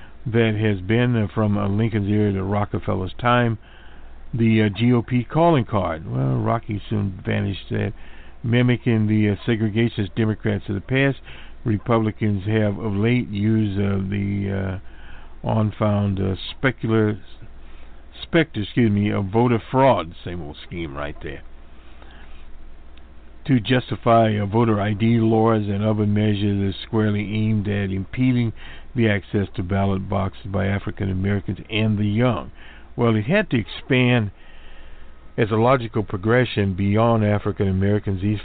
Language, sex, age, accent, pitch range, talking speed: English, male, 60-79, American, 95-115 Hz, 140 wpm